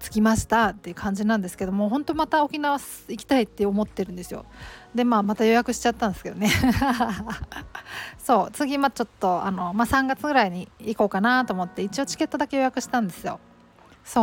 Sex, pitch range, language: female, 195-265 Hz, Japanese